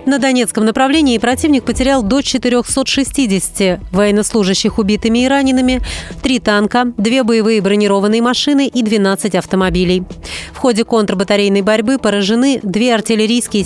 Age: 30-49